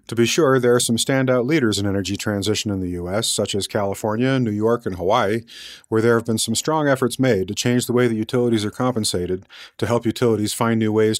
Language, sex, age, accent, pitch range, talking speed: English, male, 40-59, American, 105-125 Hz, 230 wpm